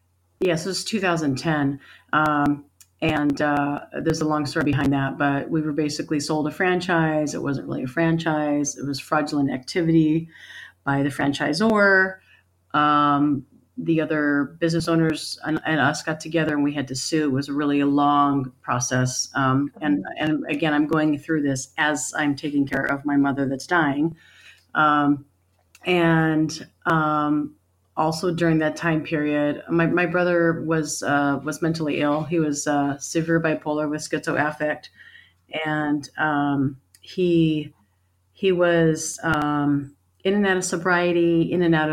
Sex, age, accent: female, 30-49, American